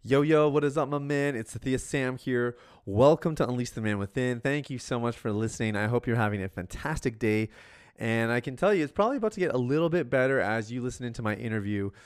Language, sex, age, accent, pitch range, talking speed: English, male, 30-49, American, 110-135 Hz, 250 wpm